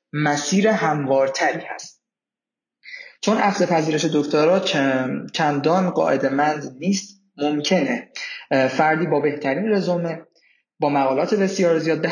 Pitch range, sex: 145-185 Hz, male